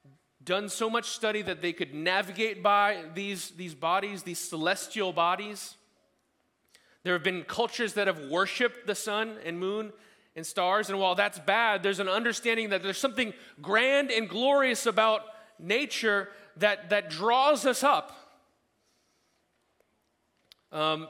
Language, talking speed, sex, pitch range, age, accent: English, 140 wpm, male, 160-205 Hz, 30-49, American